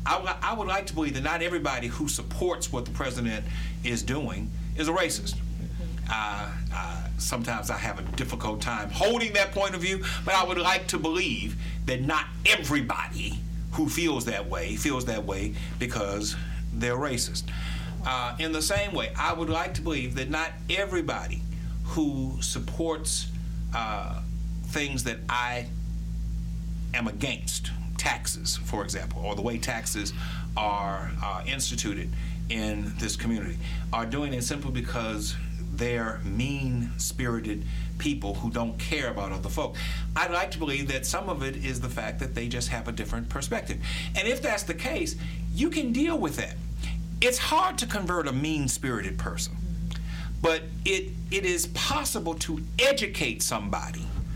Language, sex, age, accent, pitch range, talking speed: English, male, 60-79, American, 120-165 Hz, 155 wpm